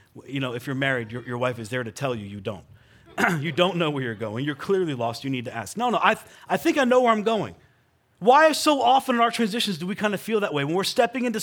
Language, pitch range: English, 155-230 Hz